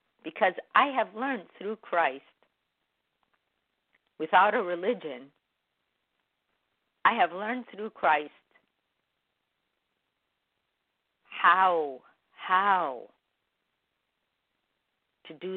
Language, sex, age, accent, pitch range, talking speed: English, female, 50-69, American, 155-190 Hz, 70 wpm